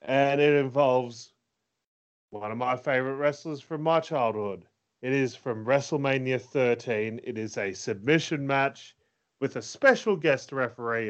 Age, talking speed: 30-49, 140 wpm